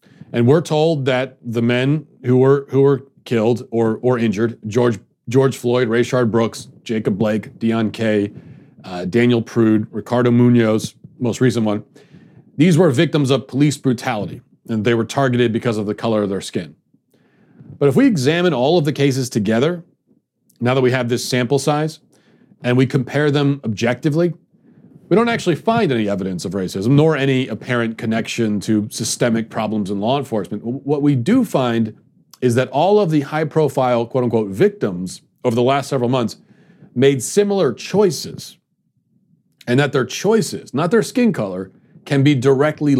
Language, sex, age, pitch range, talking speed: English, male, 40-59, 115-155 Hz, 160 wpm